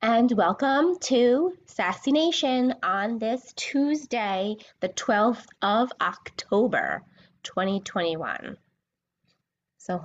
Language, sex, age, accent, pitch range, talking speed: English, female, 20-39, American, 180-240 Hz, 85 wpm